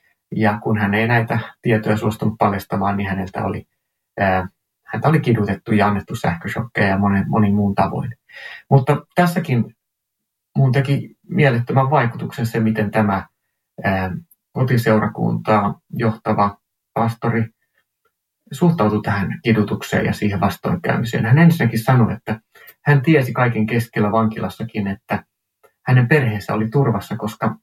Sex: male